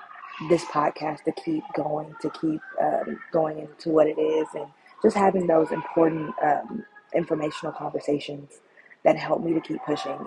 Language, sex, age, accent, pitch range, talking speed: English, female, 20-39, American, 150-165 Hz, 160 wpm